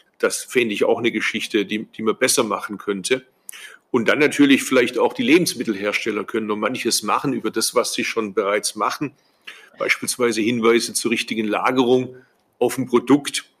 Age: 50-69